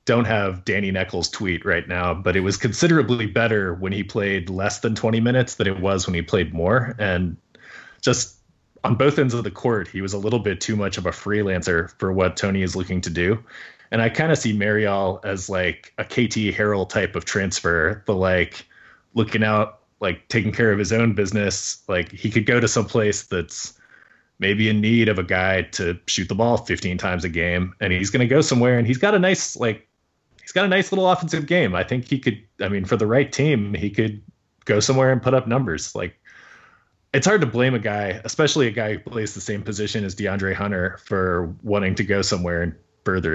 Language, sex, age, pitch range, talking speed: English, male, 30-49, 95-120 Hz, 220 wpm